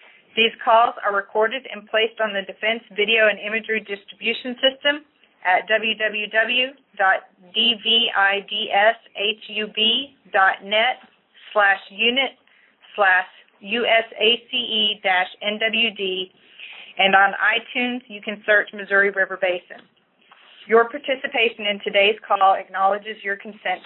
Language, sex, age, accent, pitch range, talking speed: English, female, 40-59, American, 200-230 Hz, 95 wpm